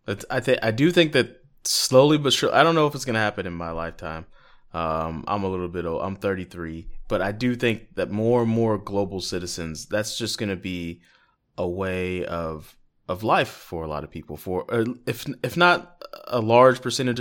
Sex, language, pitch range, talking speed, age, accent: male, English, 90-115 Hz, 200 wpm, 20-39, American